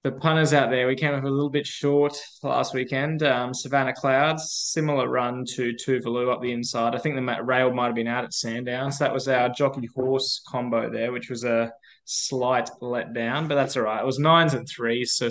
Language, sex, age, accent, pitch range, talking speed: English, male, 20-39, Australian, 120-135 Hz, 215 wpm